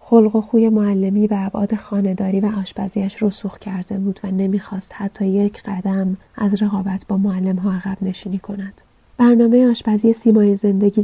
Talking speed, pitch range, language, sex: 160 wpm, 195-215 Hz, Persian, female